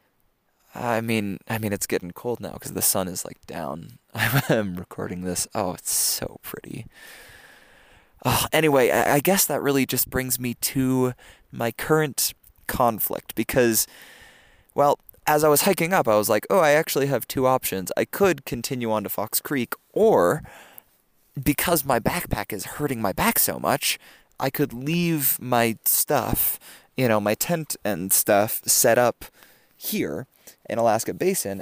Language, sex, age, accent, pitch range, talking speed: English, male, 20-39, American, 105-145 Hz, 160 wpm